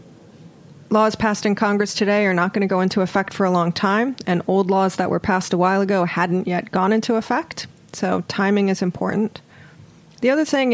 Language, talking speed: English, 205 wpm